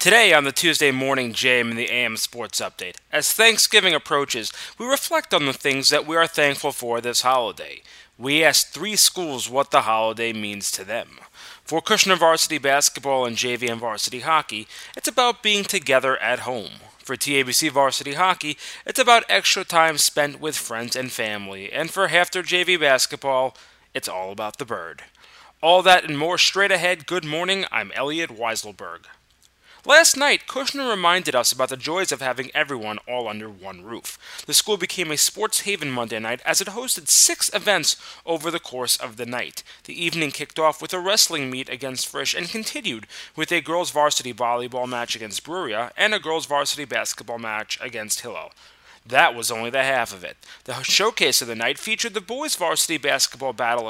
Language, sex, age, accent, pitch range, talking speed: English, male, 30-49, American, 120-180 Hz, 185 wpm